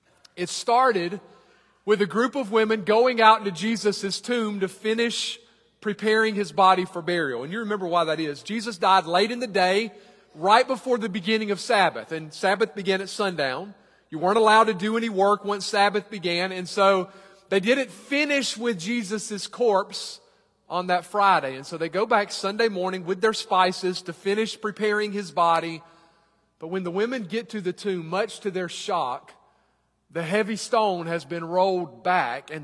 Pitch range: 180-230 Hz